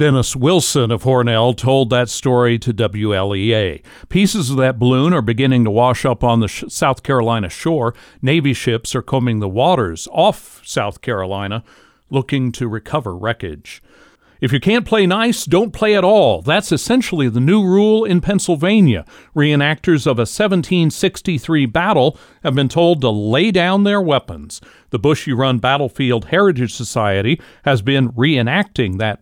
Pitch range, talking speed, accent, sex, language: 115-155 Hz, 150 wpm, American, male, English